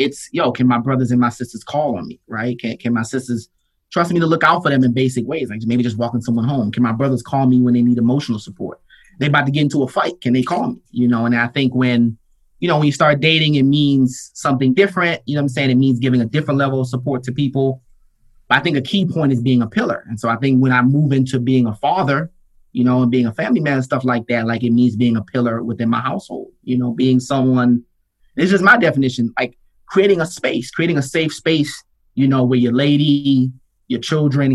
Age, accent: 30-49, American